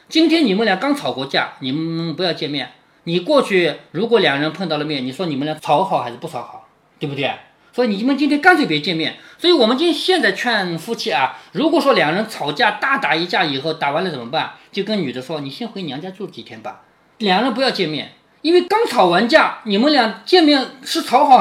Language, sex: Chinese, male